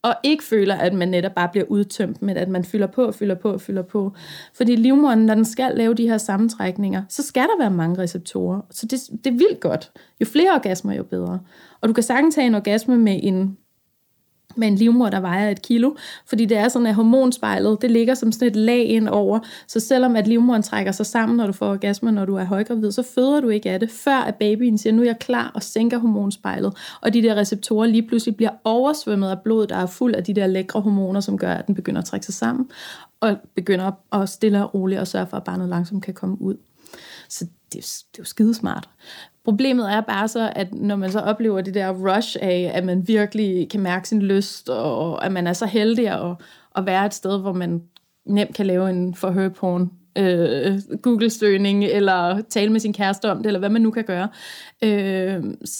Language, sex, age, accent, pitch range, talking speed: Danish, female, 30-49, native, 190-230 Hz, 220 wpm